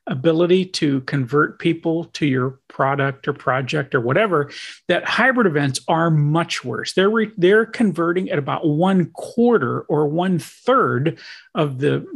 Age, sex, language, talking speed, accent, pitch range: 40-59, male, English, 145 wpm, American, 140-195 Hz